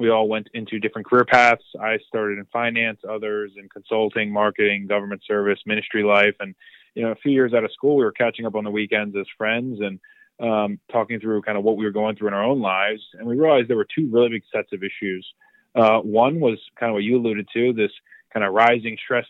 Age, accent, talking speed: 20-39, American, 240 wpm